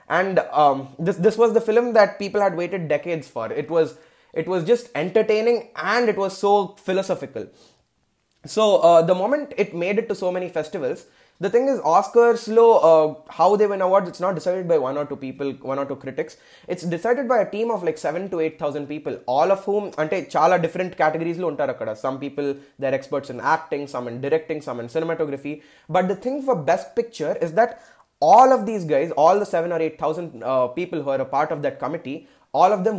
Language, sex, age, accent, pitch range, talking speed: Telugu, male, 20-39, native, 140-200 Hz, 220 wpm